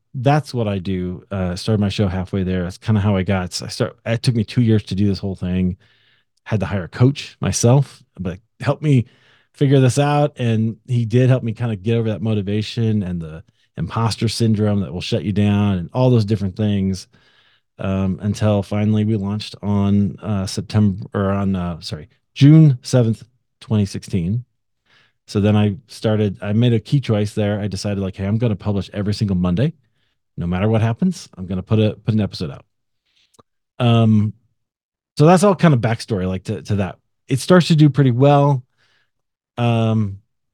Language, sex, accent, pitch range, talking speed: English, male, American, 100-120 Hz, 195 wpm